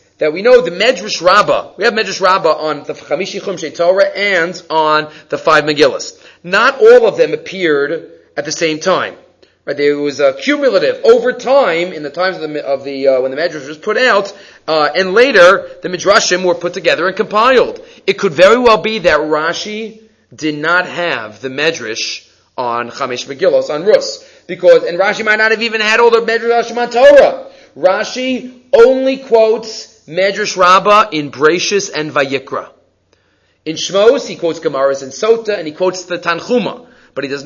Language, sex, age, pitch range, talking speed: English, male, 30-49, 160-255 Hz, 185 wpm